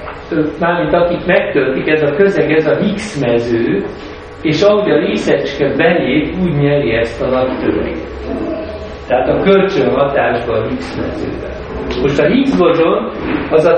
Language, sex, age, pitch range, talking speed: Hungarian, male, 60-79, 130-175 Hz, 135 wpm